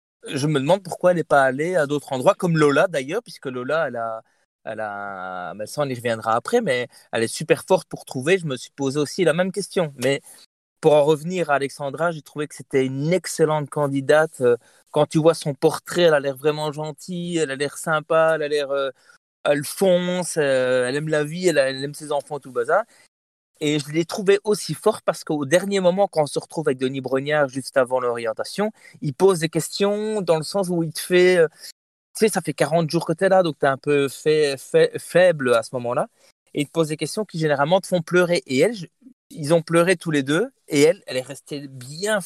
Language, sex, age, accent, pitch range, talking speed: French, male, 20-39, French, 140-175 Hz, 230 wpm